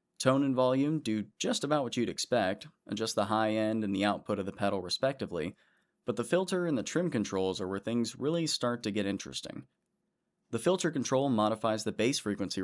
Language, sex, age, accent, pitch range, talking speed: English, male, 20-39, American, 100-130 Hz, 200 wpm